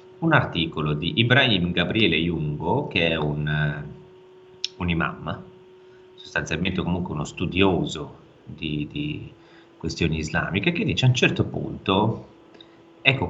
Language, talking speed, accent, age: Italian, 115 wpm, native, 30-49